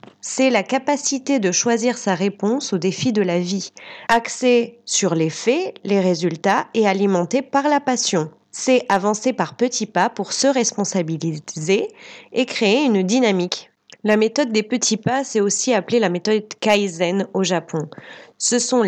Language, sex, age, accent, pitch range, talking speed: French, female, 30-49, French, 190-245 Hz, 160 wpm